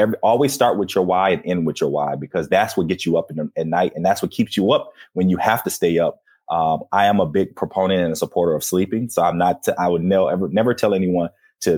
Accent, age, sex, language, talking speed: American, 30-49, male, English, 290 wpm